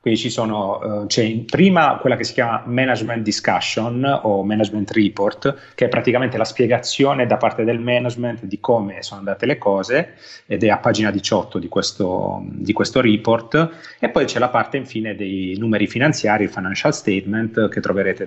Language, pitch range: Italian, 105-125 Hz